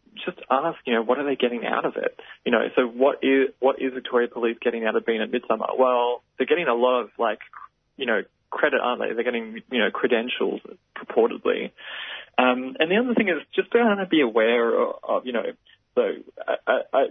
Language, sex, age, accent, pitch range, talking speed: English, male, 20-39, Australian, 115-150 Hz, 210 wpm